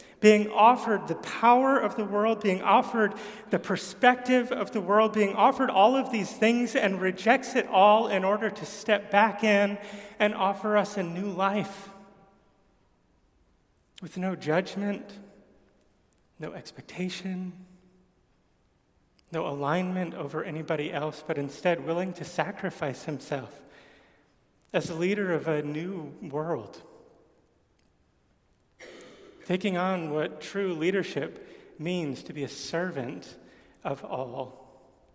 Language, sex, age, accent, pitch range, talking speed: English, male, 30-49, American, 155-200 Hz, 120 wpm